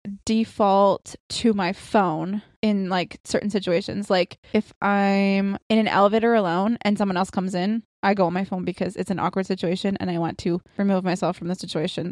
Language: English